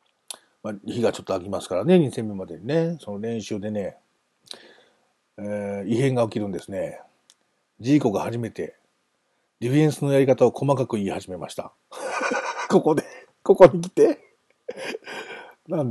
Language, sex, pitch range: Japanese, male, 105-160 Hz